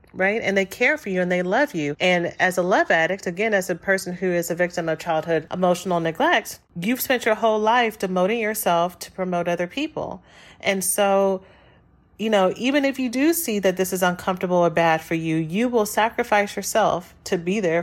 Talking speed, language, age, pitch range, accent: 210 wpm, English, 40-59, 165-200 Hz, American